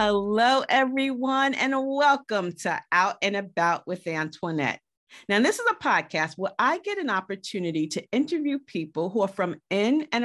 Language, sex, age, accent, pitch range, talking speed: English, female, 40-59, American, 165-240 Hz, 165 wpm